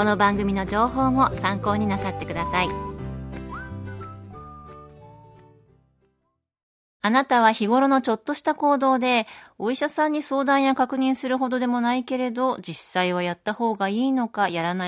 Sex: female